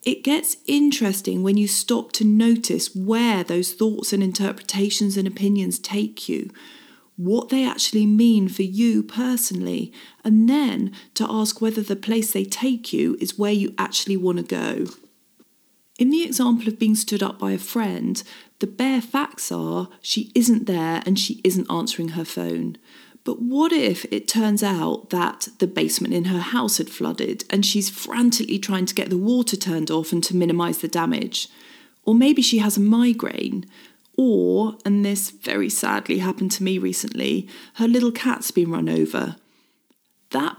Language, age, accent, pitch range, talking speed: English, 40-59, British, 190-240 Hz, 170 wpm